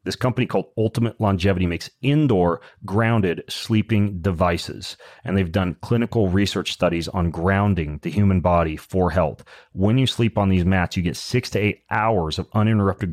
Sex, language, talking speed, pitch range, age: male, English, 170 wpm, 85-100 Hz, 30-49